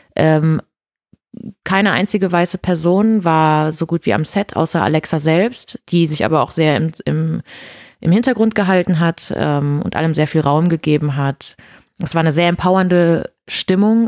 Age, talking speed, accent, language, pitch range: 20-39, 160 wpm, German, German, 155-185 Hz